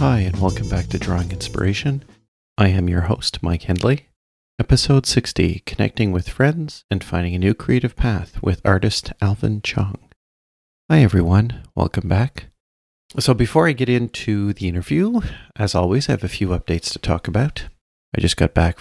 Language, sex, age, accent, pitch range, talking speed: English, male, 40-59, American, 80-100 Hz, 170 wpm